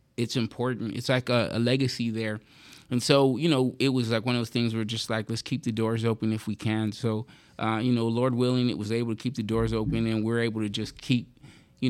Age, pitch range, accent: 20-39, 110-125 Hz, American